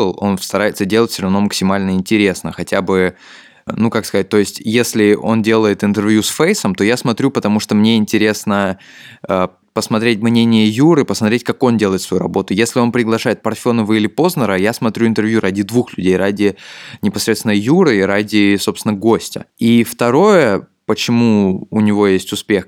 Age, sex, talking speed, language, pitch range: 20-39, male, 165 wpm, Russian, 100-115 Hz